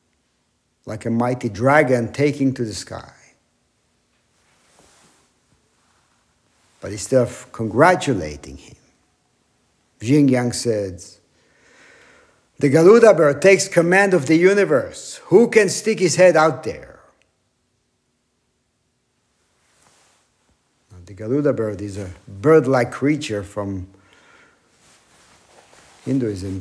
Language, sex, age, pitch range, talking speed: English, male, 60-79, 105-145 Hz, 90 wpm